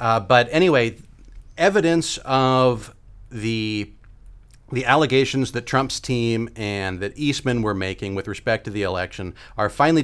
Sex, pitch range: male, 100-125 Hz